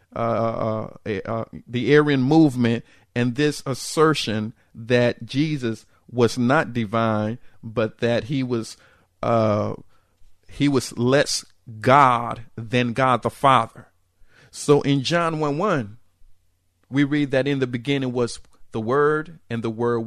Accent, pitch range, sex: American, 110-145 Hz, male